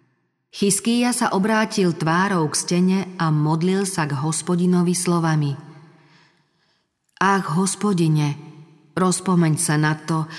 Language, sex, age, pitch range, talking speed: Slovak, female, 40-59, 155-180 Hz, 105 wpm